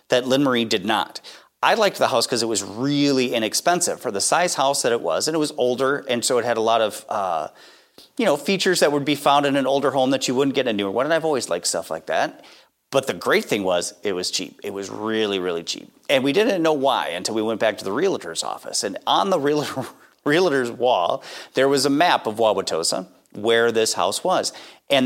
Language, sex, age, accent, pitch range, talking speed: English, male, 30-49, American, 105-145 Hz, 240 wpm